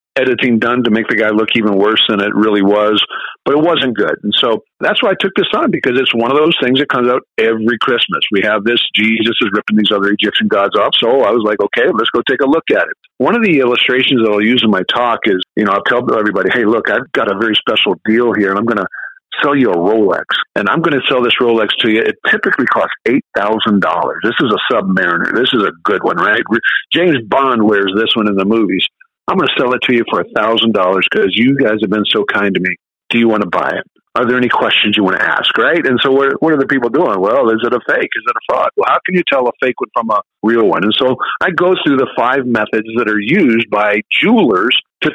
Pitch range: 110-135 Hz